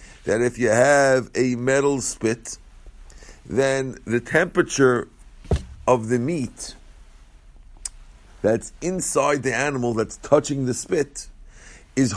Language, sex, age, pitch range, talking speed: English, male, 50-69, 115-155 Hz, 110 wpm